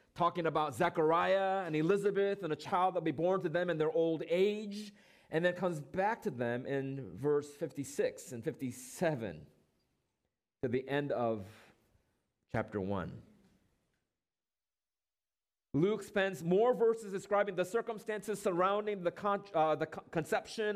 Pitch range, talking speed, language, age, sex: 130-190 Hz, 135 wpm, English, 40-59, male